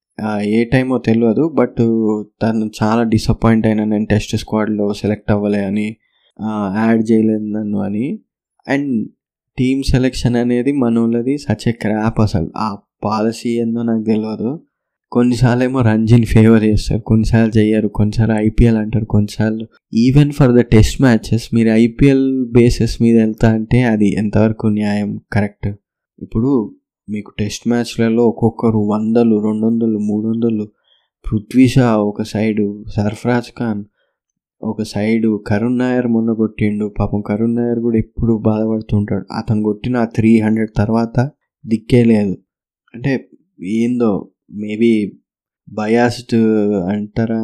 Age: 20-39